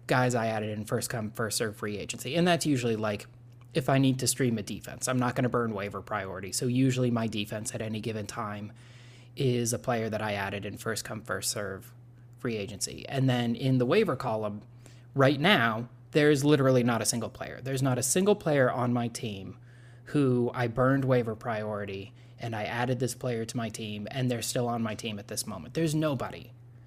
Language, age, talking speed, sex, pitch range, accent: English, 20-39, 210 wpm, male, 115-135 Hz, American